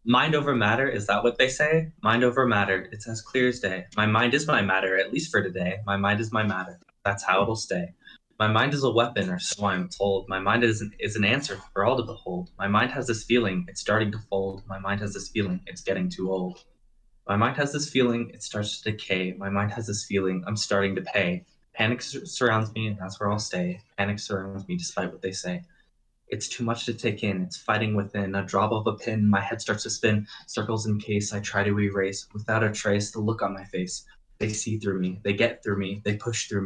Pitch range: 100-115 Hz